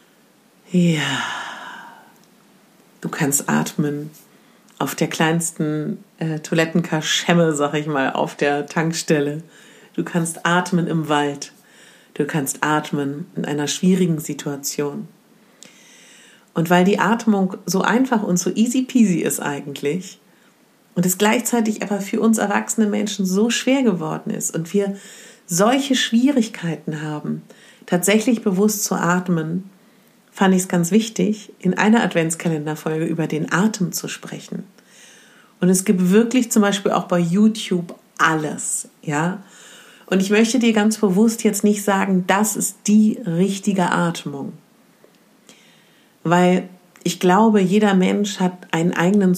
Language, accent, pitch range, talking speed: German, German, 165-220 Hz, 130 wpm